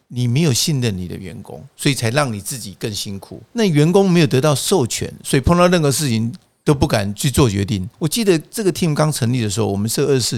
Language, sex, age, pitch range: Chinese, male, 50-69, 110-155 Hz